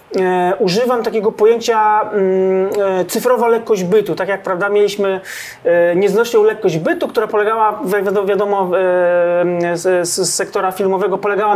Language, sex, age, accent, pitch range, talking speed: Polish, male, 40-59, native, 190-240 Hz, 115 wpm